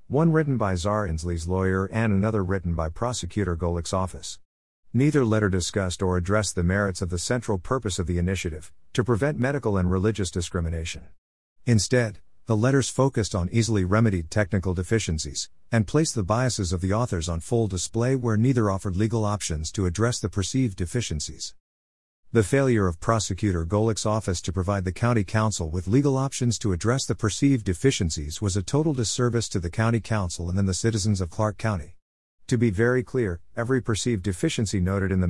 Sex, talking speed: male, 180 wpm